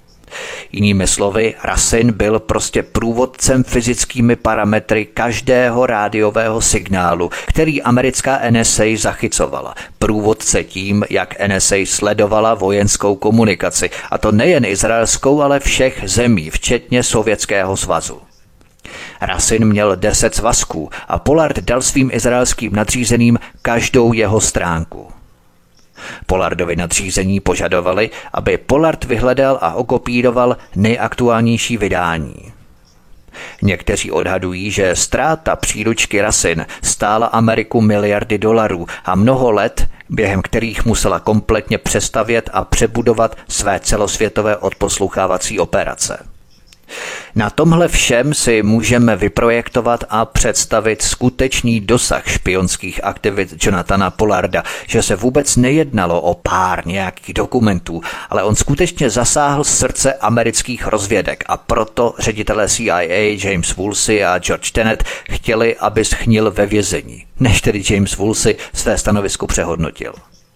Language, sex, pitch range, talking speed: Czech, male, 100-120 Hz, 110 wpm